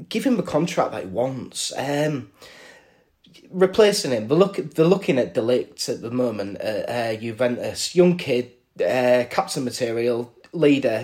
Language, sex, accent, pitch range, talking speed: English, male, British, 125-180 Hz, 150 wpm